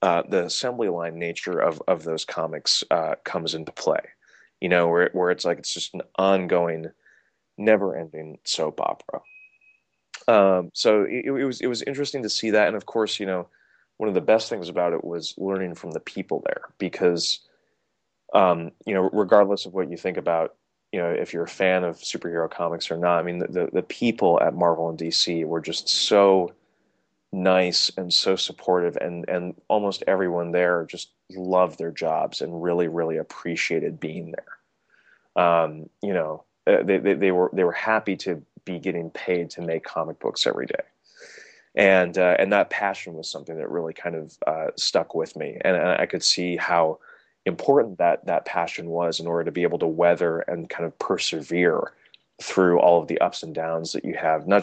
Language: English